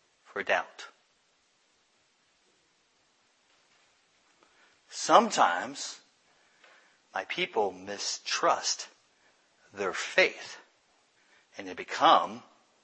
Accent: American